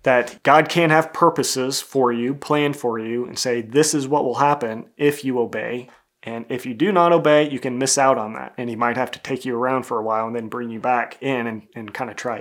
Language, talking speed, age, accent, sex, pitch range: English, 260 wpm, 30-49, American, male, 120-135 Hz